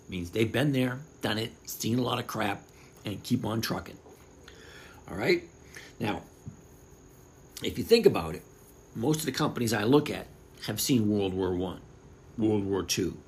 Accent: American